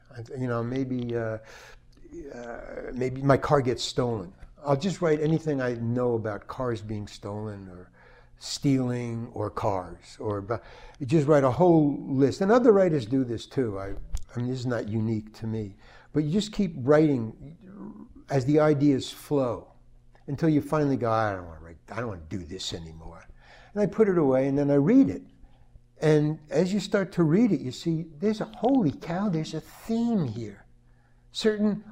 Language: English